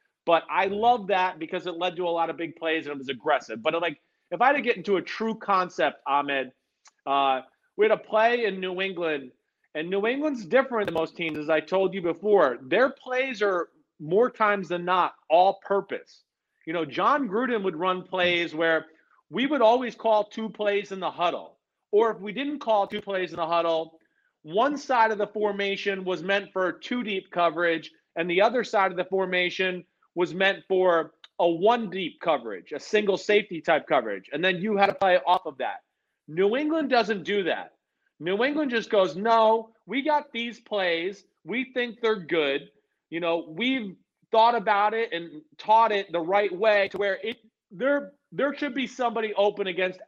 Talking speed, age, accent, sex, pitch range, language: 195 wpm, 40-59, American, male, 175-225 Hz, English